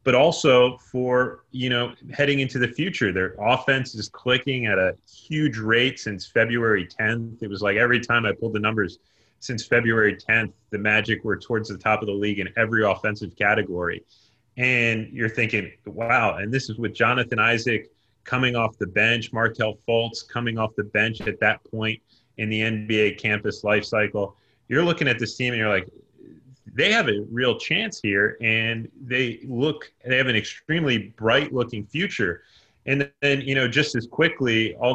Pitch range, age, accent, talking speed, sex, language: 105-130 Hz, 30-49, American, 185 wpm, male, English